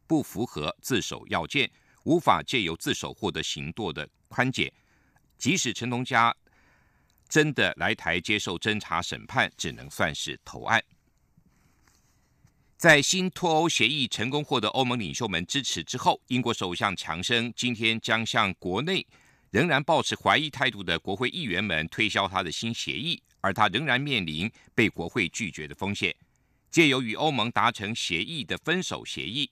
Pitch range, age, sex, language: 95-130 Hz, 50-69, male, German